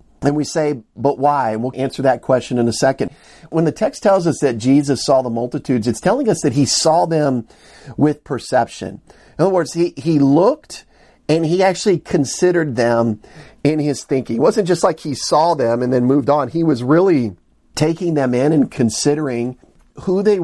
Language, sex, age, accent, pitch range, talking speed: English, male, 50-69, American, 115-150 Hz, 195 wpm